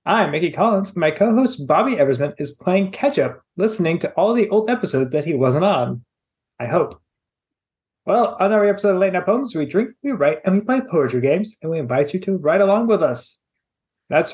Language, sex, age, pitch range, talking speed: English, male, 20-39, 145-205 Hz, 205 wpm